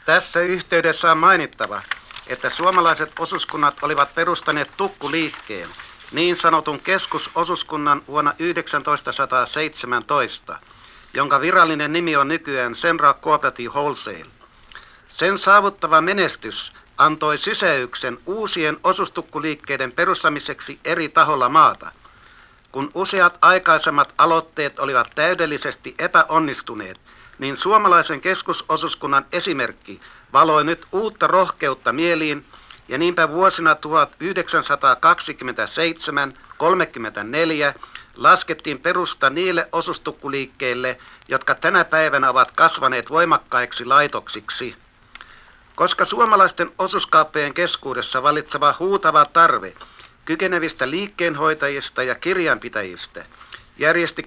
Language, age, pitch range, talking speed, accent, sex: Finnish, 60-79, 145-175 Hz, 85 wpm, native, male